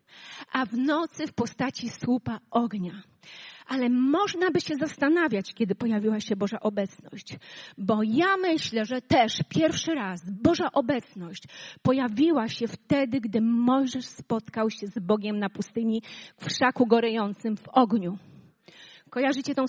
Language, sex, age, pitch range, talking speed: Polish, female, 30-49, 210-280 Hz, 135 wpm